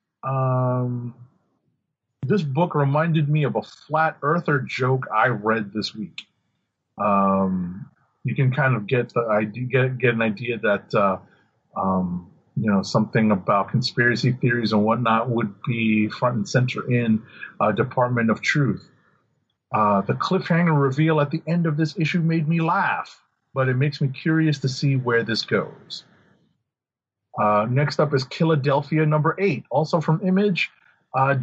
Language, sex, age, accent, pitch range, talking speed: English, male, 40-59, American, 115-155 Hz, 155 wpm